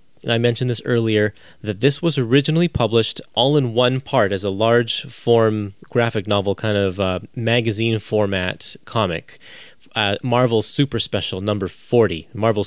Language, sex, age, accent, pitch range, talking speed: English, male, 20-39, American, 95-115 Hz, 150 wpm